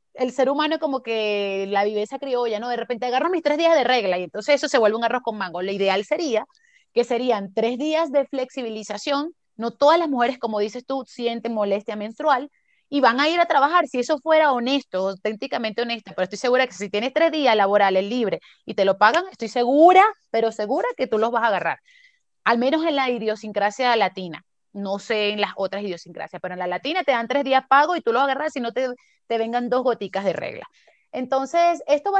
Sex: female